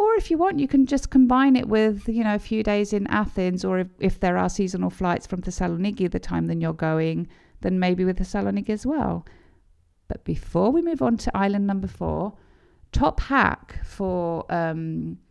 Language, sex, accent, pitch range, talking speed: Greek, female, British, 165-210 Hz, 200 wpm